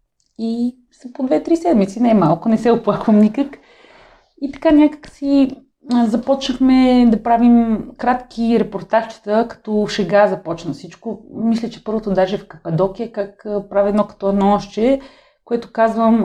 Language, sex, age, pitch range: Bulgarian, female, 30-49, 190-235 Hz